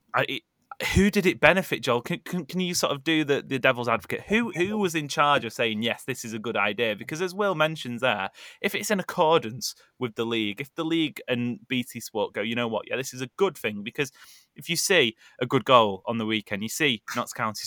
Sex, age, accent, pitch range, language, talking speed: male, 20-39, British, 110-145 Hz, English, 245 wpm